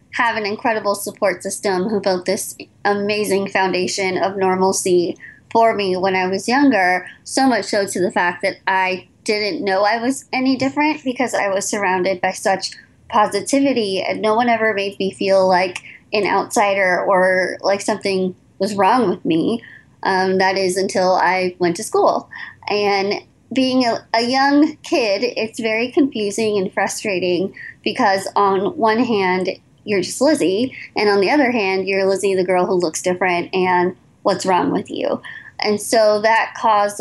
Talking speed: 165 wpm